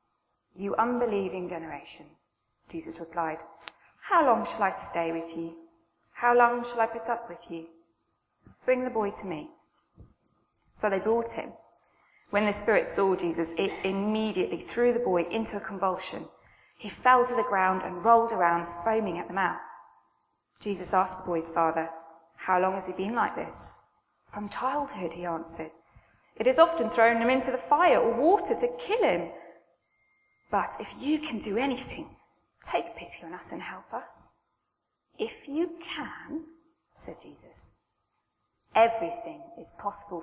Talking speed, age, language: 155 wpm, 20-39, English